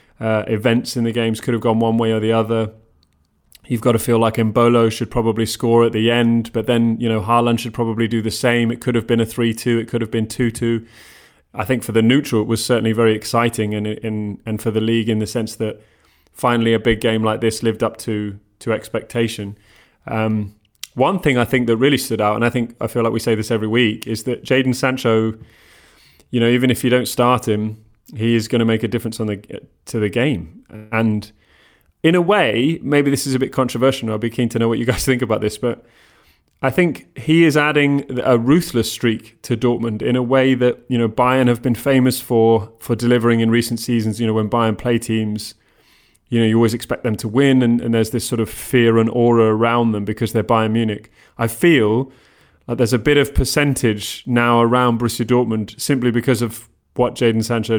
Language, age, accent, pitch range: English, 20-39, British, 110-120 Hz